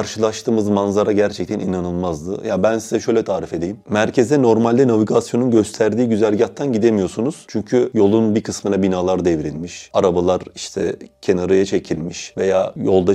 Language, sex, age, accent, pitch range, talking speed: Turkish, male, 30-49, native, 95-115 Hz, 130 wpm